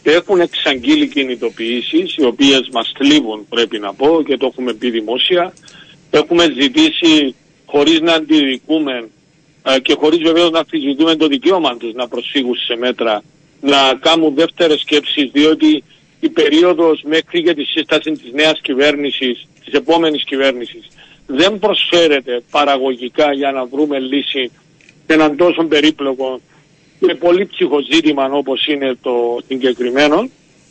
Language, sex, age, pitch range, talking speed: Greek, male, 50-69, 145-175 Hz, 130 wpm